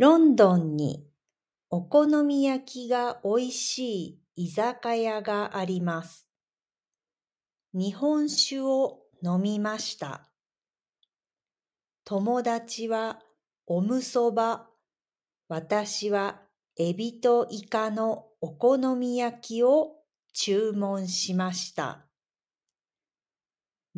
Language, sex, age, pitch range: Japanese, female, 50-69, 175-250 Hz